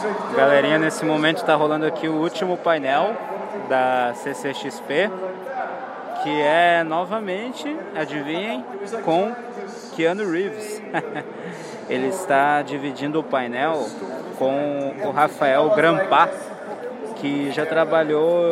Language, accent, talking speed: Portuguese, Brazilian, 95 wpm